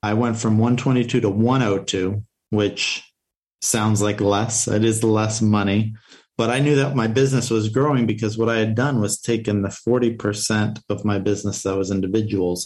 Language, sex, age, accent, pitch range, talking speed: English, male, 40-59, American, 105-125 Hz, 175 wpm